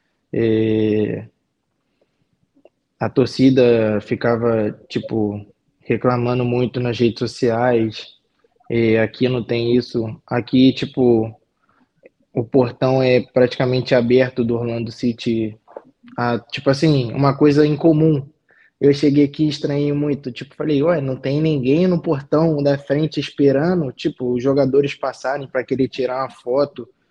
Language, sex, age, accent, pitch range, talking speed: Portuguese, male, 20-39, Brazilian, 125-145 Hz, 125 wpm